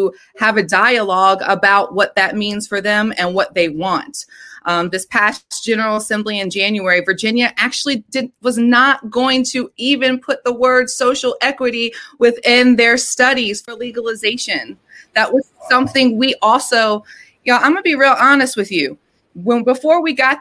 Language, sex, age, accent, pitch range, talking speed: English, female, 30-49, American, 180-245 Hz, 170 wpm